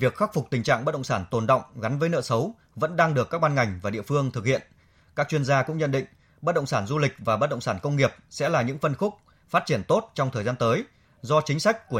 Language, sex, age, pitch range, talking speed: Vietnamese, male, 20-39, 115-155 Hz, 290 wpm